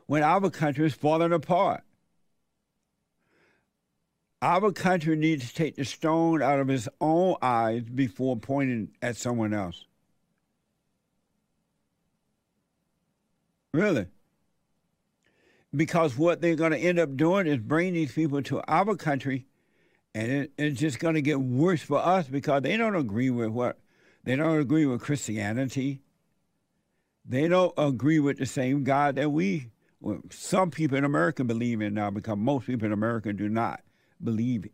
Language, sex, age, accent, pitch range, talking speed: English, male, 60-79, American, 125-160 Hz, 145 wpm